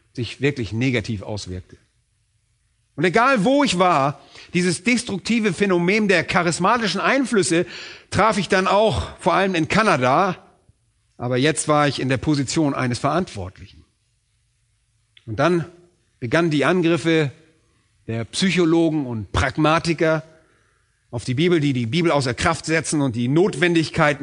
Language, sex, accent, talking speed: German, male, German, 130 wpm